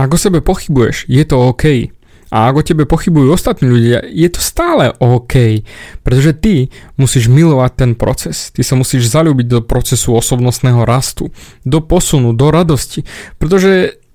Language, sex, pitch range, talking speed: Slovak, male, 125-160 Hz, 155 wpm